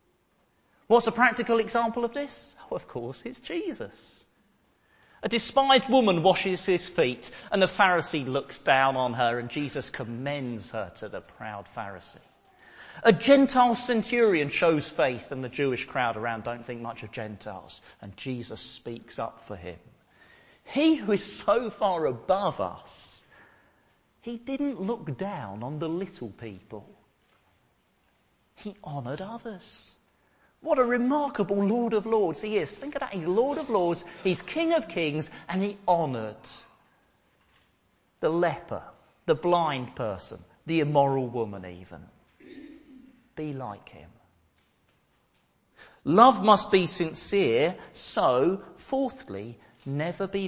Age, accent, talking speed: 40-59, British, 135 wpm